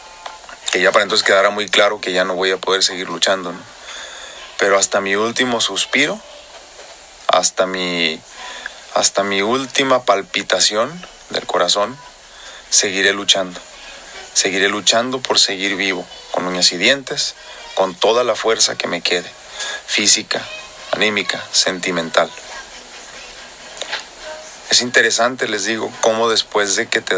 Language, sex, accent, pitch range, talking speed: Spanish, male, Mexican, 95-115 Hz, 130 wpm